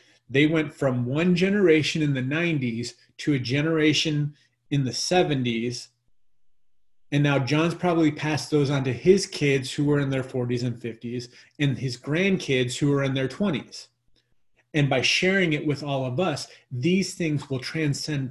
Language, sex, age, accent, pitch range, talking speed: English, male, 30-49, American, 125-150 Hz, 165 wpm